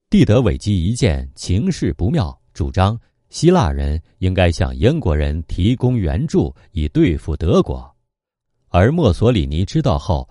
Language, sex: Chinese, male